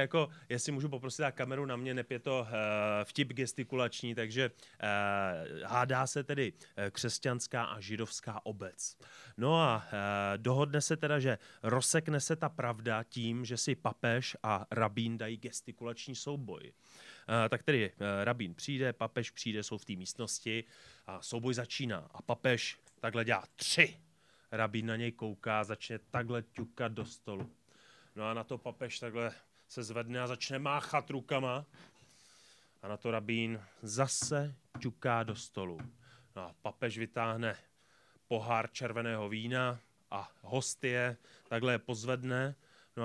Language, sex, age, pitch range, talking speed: Czech, male, 30-49, 110-130 Hz, 145 wpm